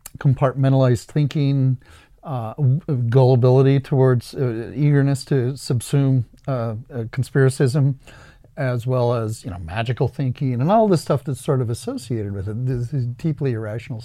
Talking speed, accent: 140 wpm, American